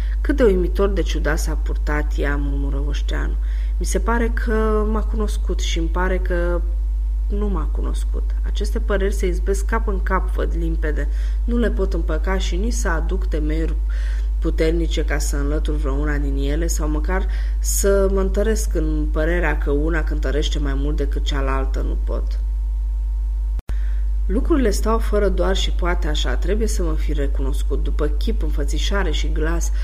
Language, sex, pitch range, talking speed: Romanian, female, 130-195 Hz, 160 wpm